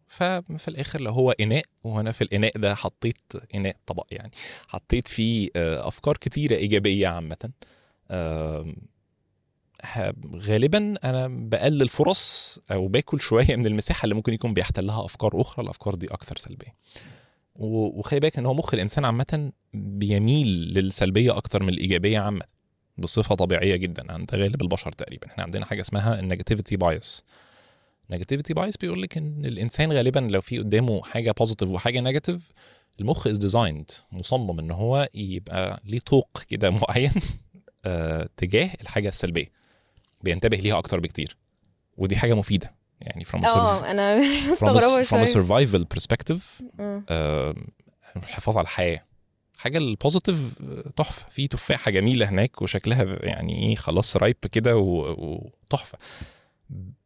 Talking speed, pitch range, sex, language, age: 125 wpm, 95-130 Hz, male, Arabic, 20-39